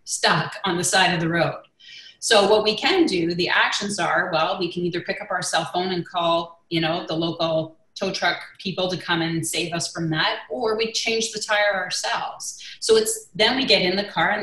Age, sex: 30-49, female